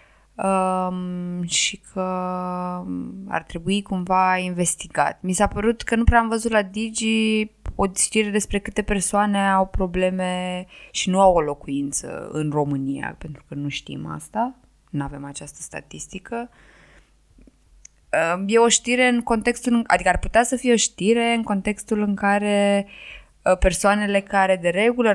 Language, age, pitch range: Romanian, 20-39, 165-210 Hz